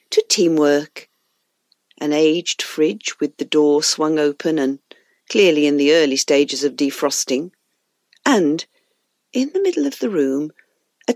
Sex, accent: female, British